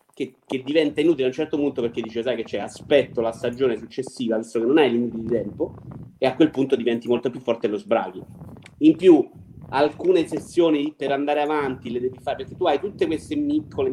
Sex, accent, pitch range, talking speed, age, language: male, native, 130-190 Hz, 215 wpm, 30-49, Italian